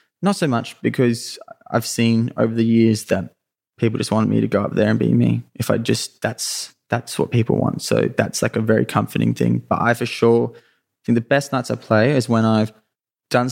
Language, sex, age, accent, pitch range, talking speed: English, male, 10-29, Australian, 110-115 Hz, 220 wpm